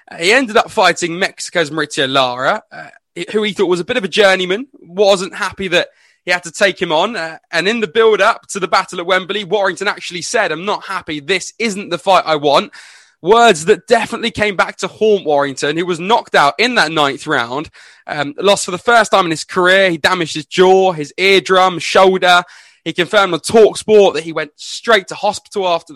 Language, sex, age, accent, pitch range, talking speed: English, male, 20-39, British, 165-210 Hz, 210 wpm